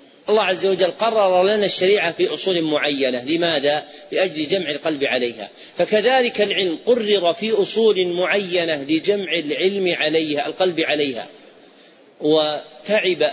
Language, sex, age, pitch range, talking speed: Arabic, male, 40-59, 150-195 Hz, 115 wpm